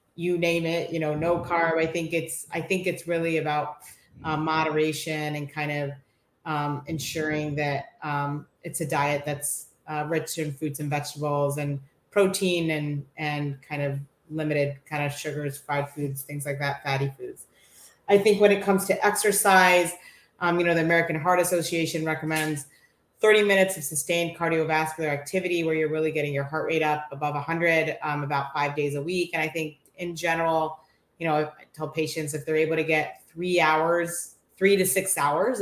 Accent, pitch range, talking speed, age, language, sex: American, 150-170 Hz, 185 wpm, 30-49, English, female